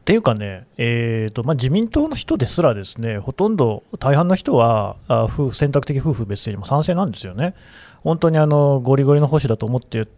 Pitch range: 115-175 Hz